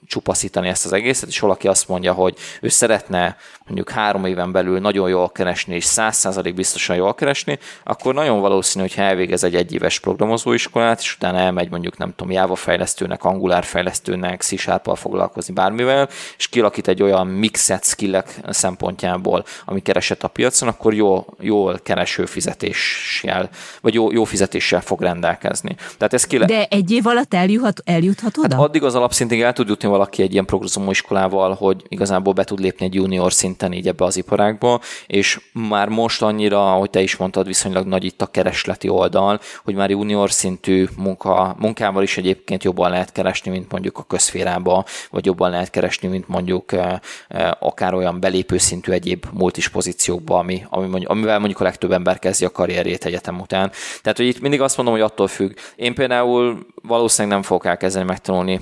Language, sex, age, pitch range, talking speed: Hungarian, male, 20-39, 95-110 Hz, 165 wpm